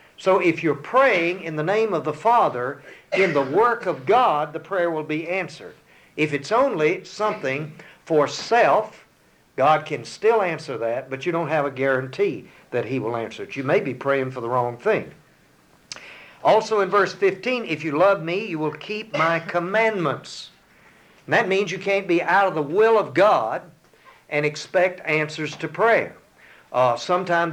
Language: English